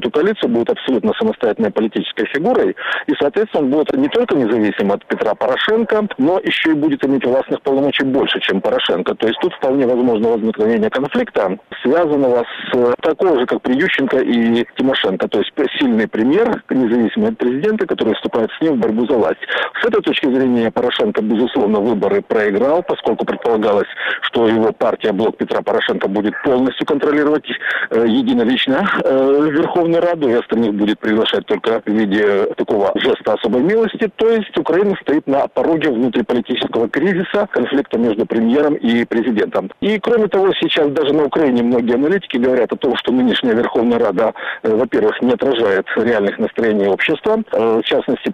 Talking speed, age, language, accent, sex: 160 wpm, 50-69, Russian, native, male